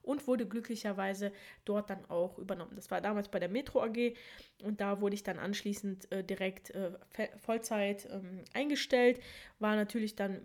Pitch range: 195-225 Hz